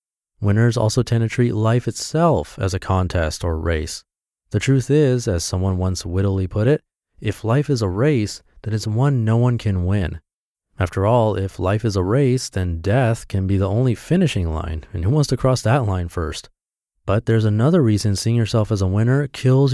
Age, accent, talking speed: 30-49, American, 200 wpm